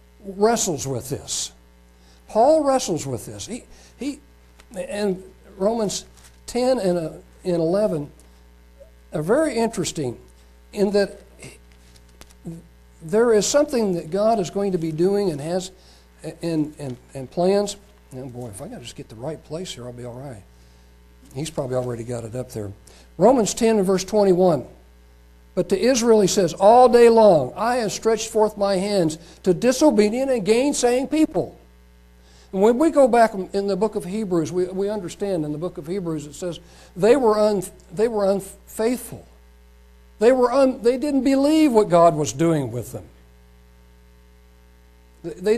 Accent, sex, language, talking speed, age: American, male, English, 155 wpm, 60-79